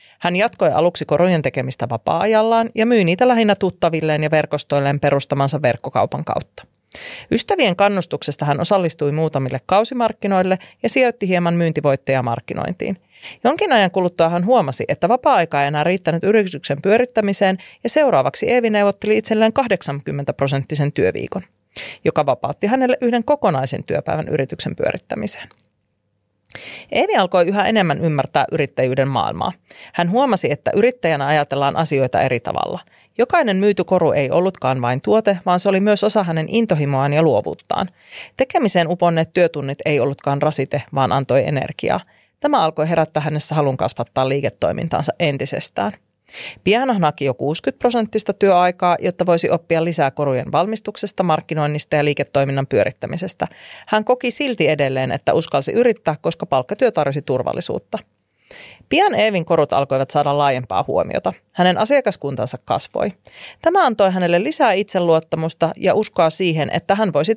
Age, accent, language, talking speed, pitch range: 30-49, native, Finnish, 135 wpm, 140-205 Hz